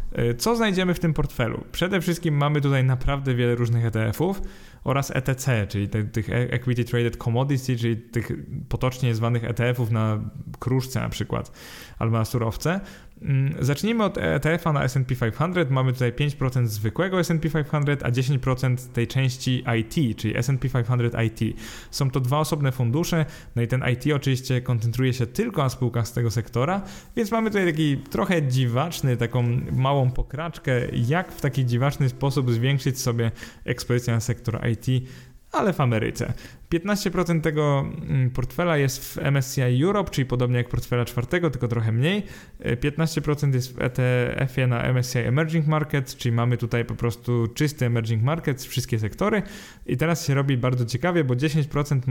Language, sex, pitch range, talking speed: Polish, male, 120-150 Hz, 155 wpm